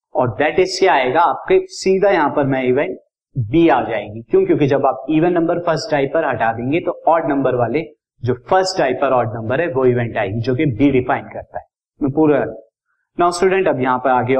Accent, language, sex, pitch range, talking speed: native, Hindi, male, 130-175 Hz, 190 wpm